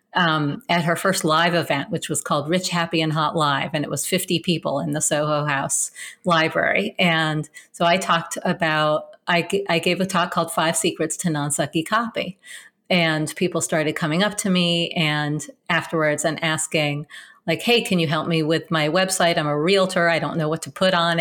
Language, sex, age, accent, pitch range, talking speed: English, female, 40-59, American, 155-180 Hz, 200 wpm